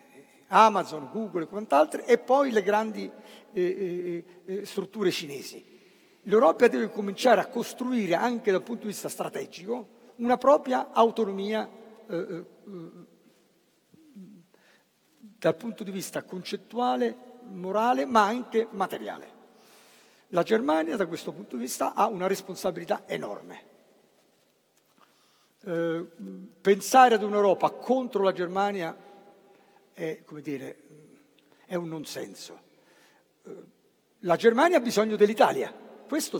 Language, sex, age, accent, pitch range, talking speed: Italian, male, 50-69, native, 185-235 Hz, 110 wpm